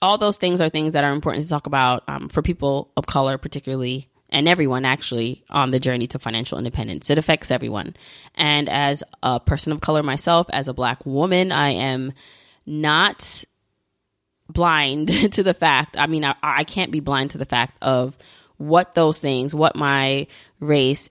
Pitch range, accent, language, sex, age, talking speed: 135-160 Hz, American, English, female, 20-39, 180 wpm